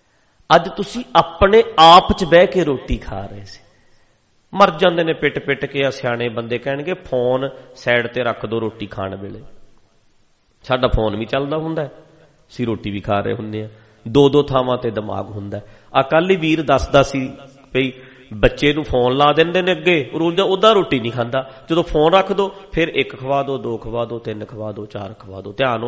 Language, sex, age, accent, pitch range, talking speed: English, male, 40-59, Indian, 110-165 Hz, 140 wpm